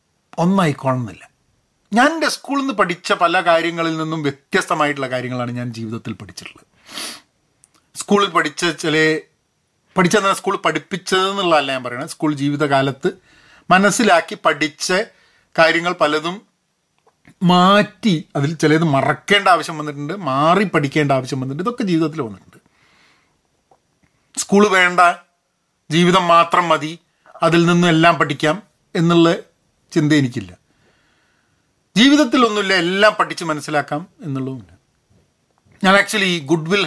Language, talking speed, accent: Malayalam, 105 wpm, native